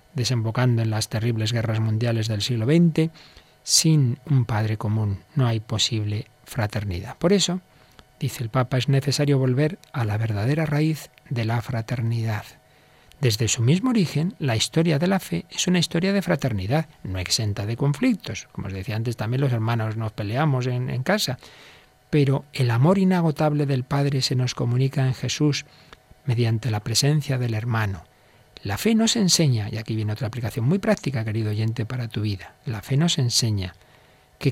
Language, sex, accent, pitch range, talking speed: Spanish, male, Spanish, 115-150 Hz, 170 wpm